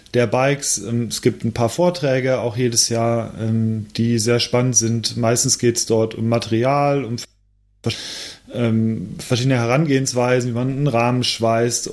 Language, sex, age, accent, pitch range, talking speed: German, male, 30-49, German, 115-140 Hz, 140 wpm